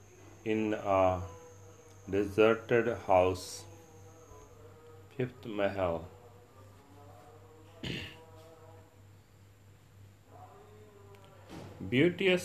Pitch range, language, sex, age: 100-115 Hz, Punjabi, male, 40-59